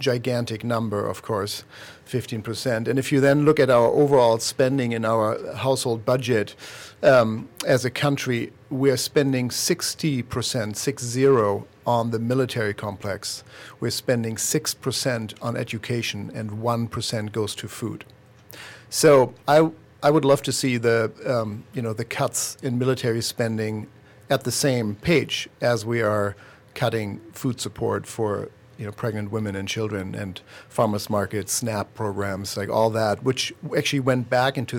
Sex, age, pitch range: male, 50-69, 110-130 Hz